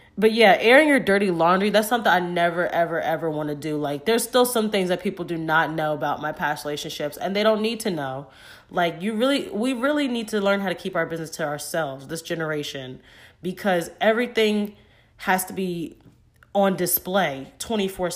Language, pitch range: English, 155-220 Hz